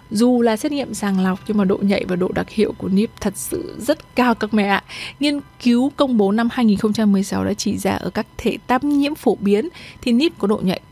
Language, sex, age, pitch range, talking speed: Vietnamese, female, 20-39, 190-240 Hz, 240 wpm